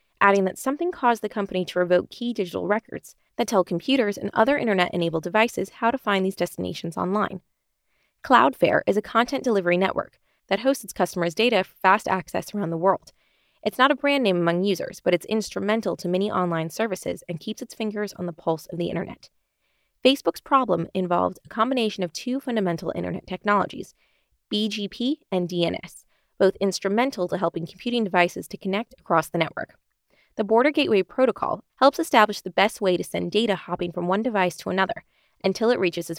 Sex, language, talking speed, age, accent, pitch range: female, English, 185 wpm, 20-39, American, 180-235 Hz